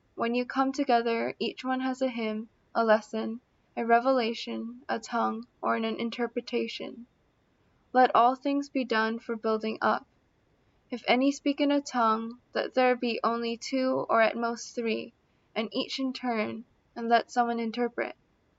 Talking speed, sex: 160 wpm, female